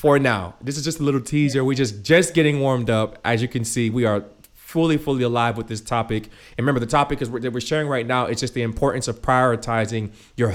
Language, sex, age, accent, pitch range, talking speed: English, male, 30-49, American, 110-130 Hz, 240 wpm